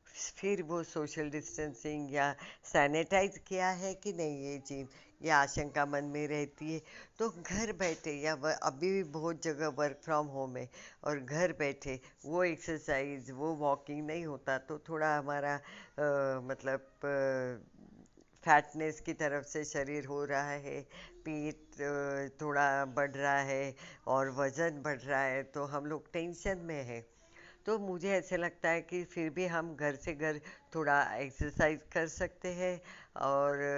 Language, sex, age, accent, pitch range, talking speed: Hindi, female, 60-79, native, 140-170 Hz, 155 wpm